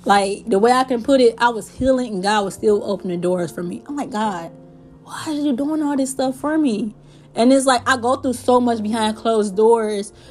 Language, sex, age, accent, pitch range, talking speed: English, female, 20-39, American, 190-230 Hz, 240 wpm